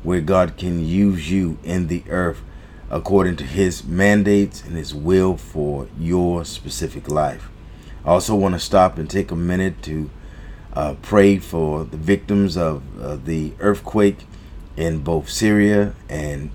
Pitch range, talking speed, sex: 80-100 Hz, 150 wpm, male